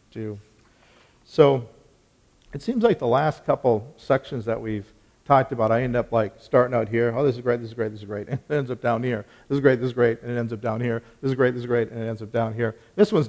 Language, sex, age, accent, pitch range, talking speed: English, male, 50-69, American, 115-145 Hz, 280 wpm